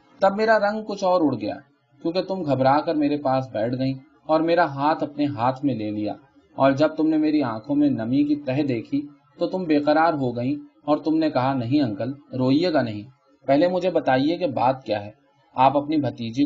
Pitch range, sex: 130-165 Hz, male